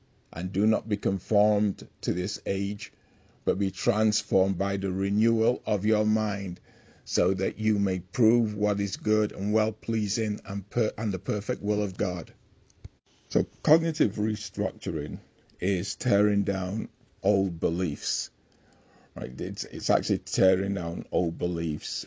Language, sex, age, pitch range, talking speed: English, male, 50-69, 90-105 Hz, 135 wpm